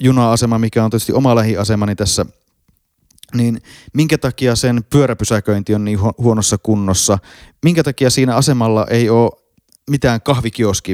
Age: 30-49